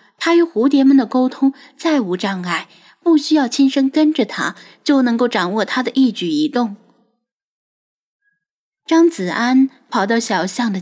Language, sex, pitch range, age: Chinese, female, 210-300 Hz, 10-29